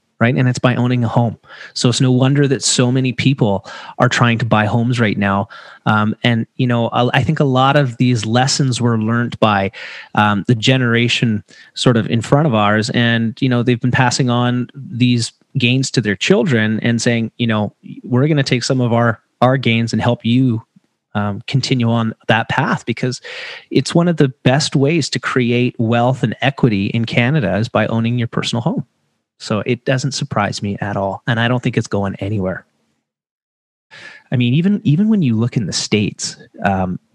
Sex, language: male, English